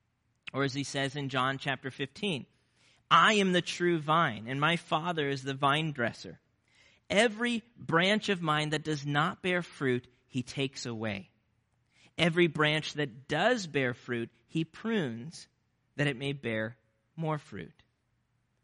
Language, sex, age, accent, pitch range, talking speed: English, male, 40-59, American, 120-150 Hz, 150 wpm